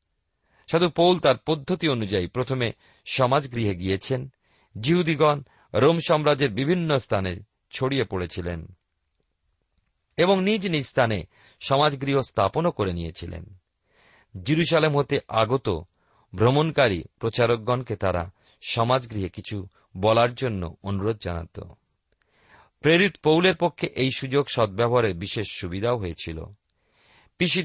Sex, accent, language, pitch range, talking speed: male, native, Bengali, 95-140 Hz, 75 wpm